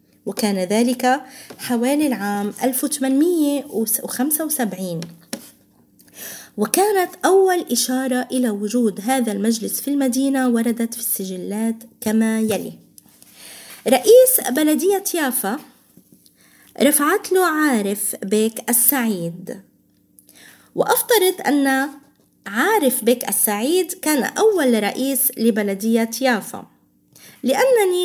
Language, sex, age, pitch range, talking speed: Arabic, female, 20-39, 220-295 Hz, 80 wpm